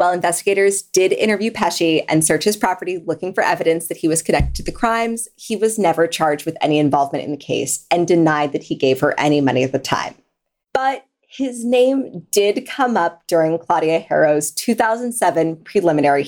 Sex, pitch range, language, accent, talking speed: female, 155-210 Hz, English, American, 190 wpm